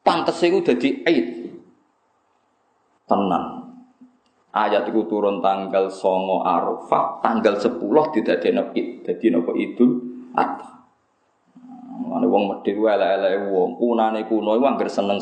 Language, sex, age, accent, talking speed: Indonesian, male, 20-39, native, 105 wpm